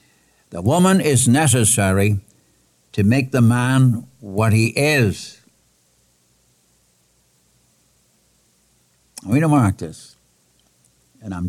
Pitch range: 90-130 Hz